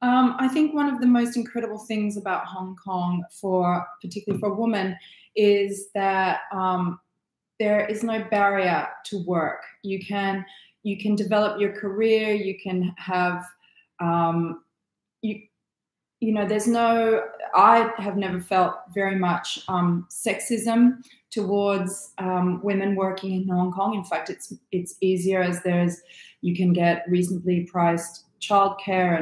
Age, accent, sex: 30-49, Australian, female